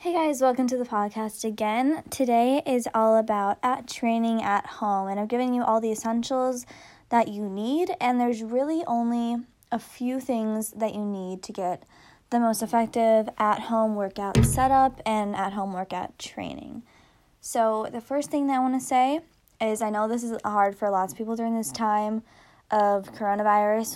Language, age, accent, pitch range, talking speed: English, 20-39, American, 200-235 Hz, 185 wpm